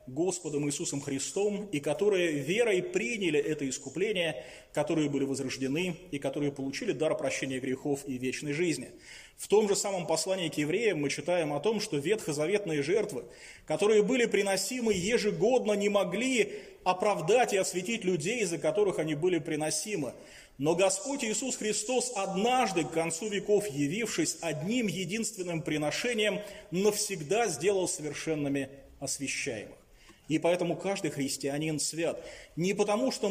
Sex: male